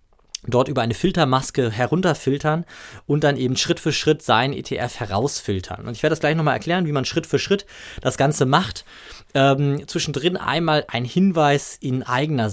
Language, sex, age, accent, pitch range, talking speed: German, male, 20-39, German, 120-150 Hz, 170 wpm